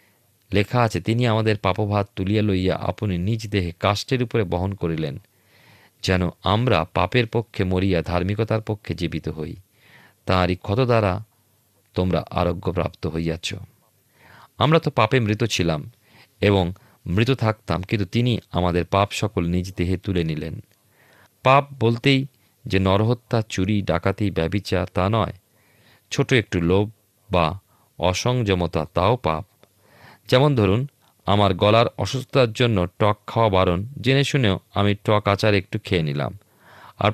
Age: 40-59